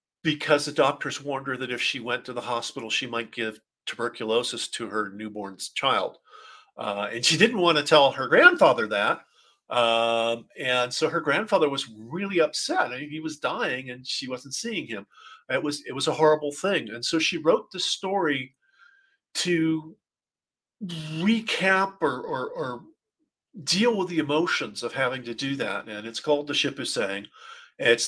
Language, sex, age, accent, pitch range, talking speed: English, male, 50-69, American, 130-180 Hz, 175 wpm